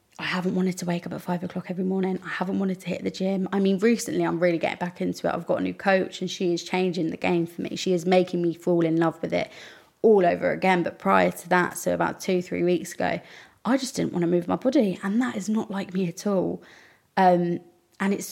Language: English